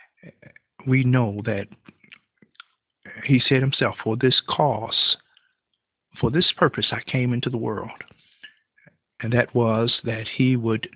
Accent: American